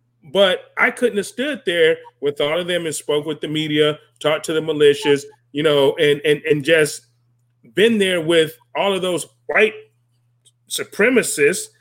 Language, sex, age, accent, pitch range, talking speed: English, male, 30-49, American, 140-225 Hz, 170 wpm